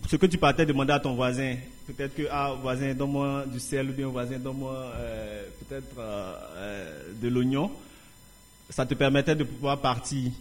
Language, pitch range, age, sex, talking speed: English, 120-135 Hz, 30-49, male, 185 wpm